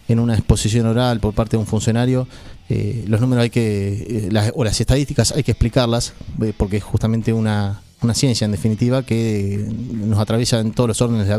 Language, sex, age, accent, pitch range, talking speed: English, male, 30-49, Argentinian, 105-120 Hz, 210 wpm